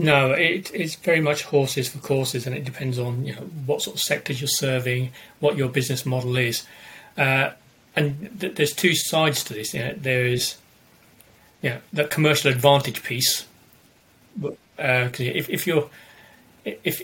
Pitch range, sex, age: 120-140 Hz, male, 30-49